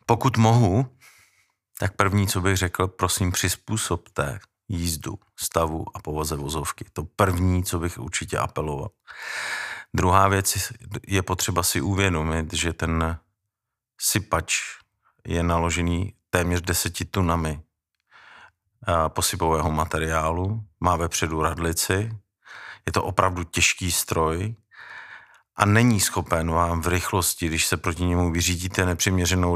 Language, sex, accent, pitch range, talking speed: Czech, male, native, 85-95 Hz, 120 wpm